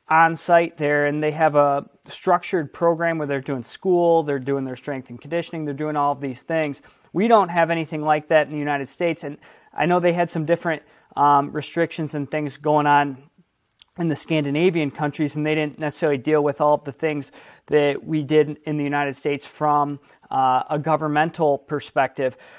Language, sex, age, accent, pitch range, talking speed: English, male, 20-39, American, 145-165 Hz, 195 wpm